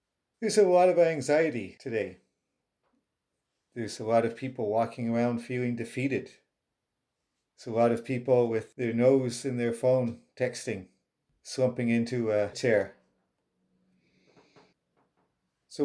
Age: 50-69